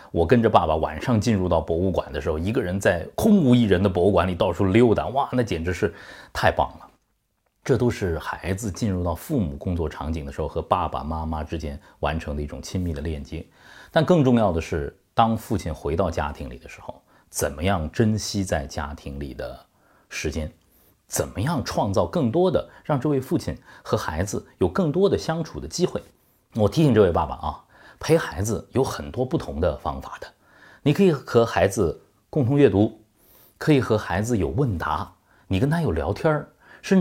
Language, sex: Chinese, male